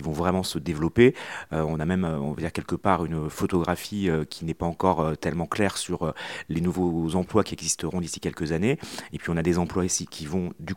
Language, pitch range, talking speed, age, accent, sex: French, 85-100 Hz, 240 wpm, 40-59, French, male